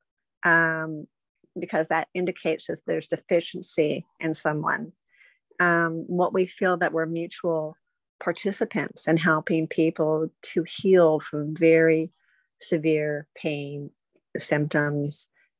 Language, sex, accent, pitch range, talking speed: English, female, American, 155-175 Hz, 105 wpm